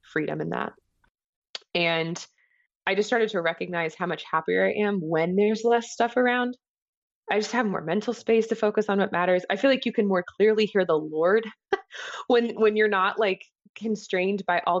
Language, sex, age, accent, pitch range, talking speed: English, female, 20-39, American, 160-220 Hz, 195 wpm